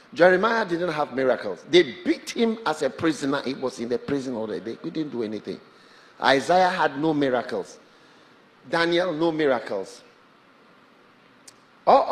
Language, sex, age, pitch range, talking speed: English, male, 50-69, 180-270 Hz, 145 wpm